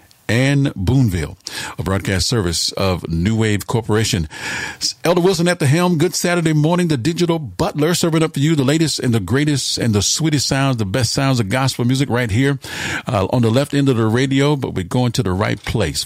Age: 50-69